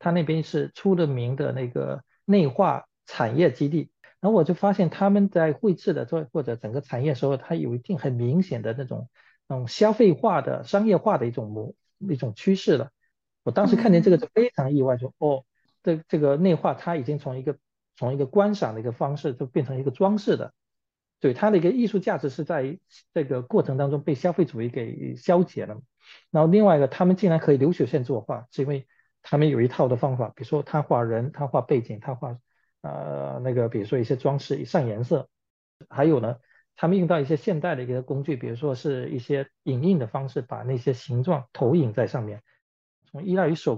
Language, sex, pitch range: Chinese, male, 130-180 Hz